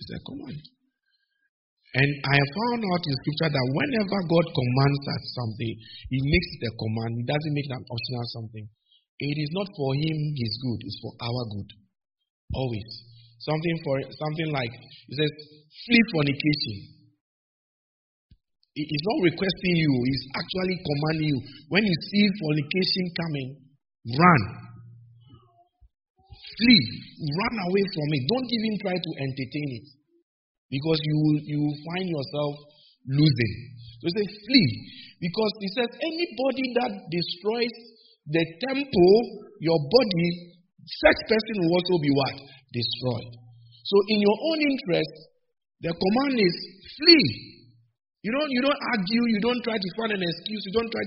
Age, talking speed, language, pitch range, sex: 50-69, 145 wpm, English, 130-205 Hz, male